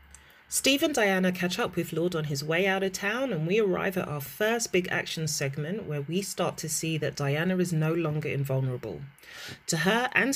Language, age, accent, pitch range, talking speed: English, 30-49, British, 155-195 Hz, 210 wpm